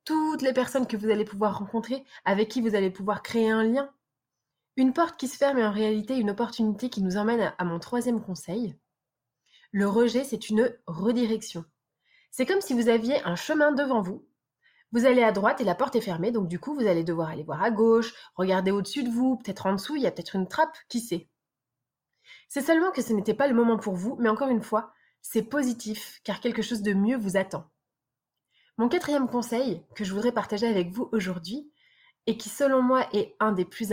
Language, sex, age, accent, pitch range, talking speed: French, female, 20-39, French, 195-260 Hz, 215 wpm